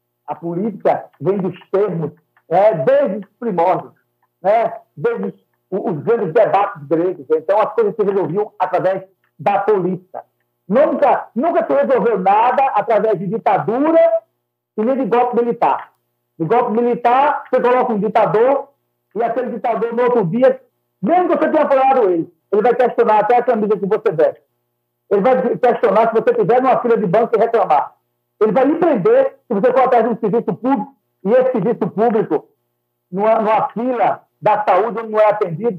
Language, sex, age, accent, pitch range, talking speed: Portuguese, male, 60-79, Brazilian, 180-245 Hz, 170 wpm